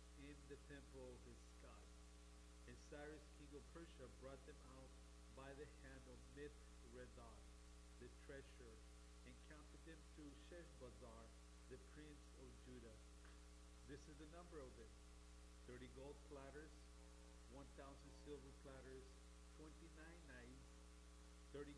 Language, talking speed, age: English, 125 wpm, 50-69